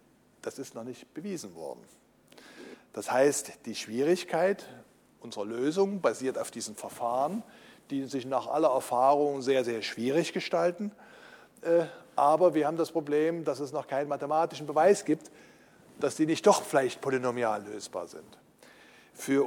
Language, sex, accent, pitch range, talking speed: German, male, German, 125-175 Hz, 140 wpm